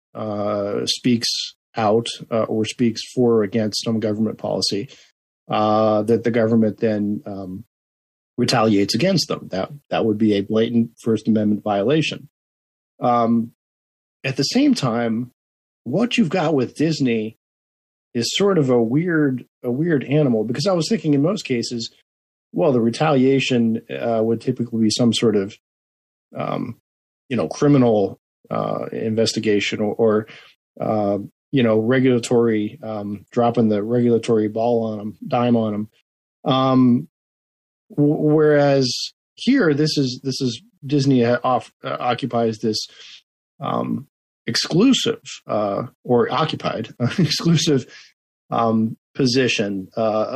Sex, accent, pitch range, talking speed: male, American, 110-135 Hz, 130 wpm